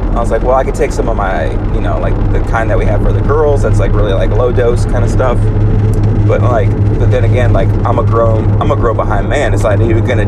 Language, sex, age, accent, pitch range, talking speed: English, male, 30-49, American, 85-100 Hz, 285 wpm